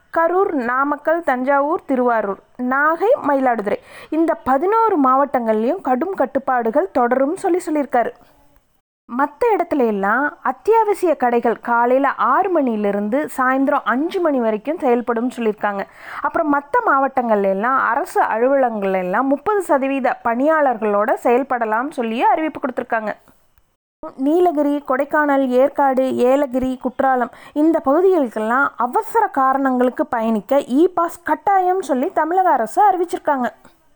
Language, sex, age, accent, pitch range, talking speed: Tamil, female, 30-49, native, 240-315 Hz, 100 wpm